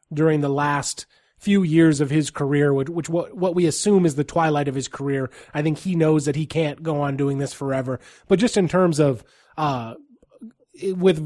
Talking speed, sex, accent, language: 210 wpm, male, American, English